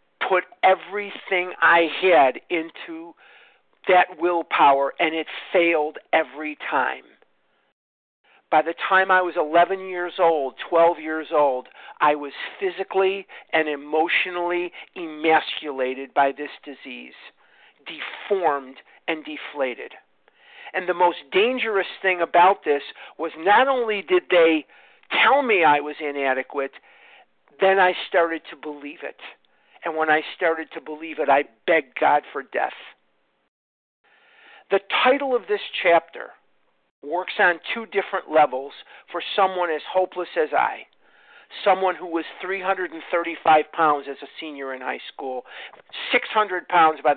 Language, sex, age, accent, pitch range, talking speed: English, male, 50-69, American, 150-190 Hz, 125 wpm